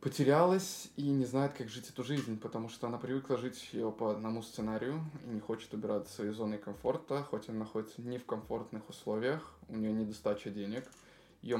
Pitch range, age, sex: 110-145 Hz, 20-39, male